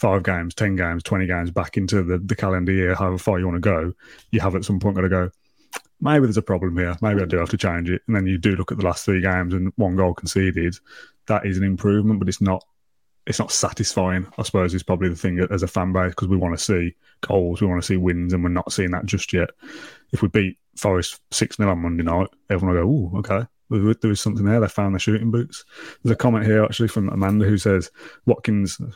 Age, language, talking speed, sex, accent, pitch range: 20-39, English, 255 wpm, male, British, 90-105 Hz